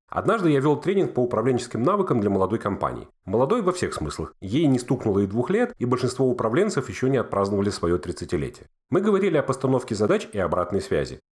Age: 40-59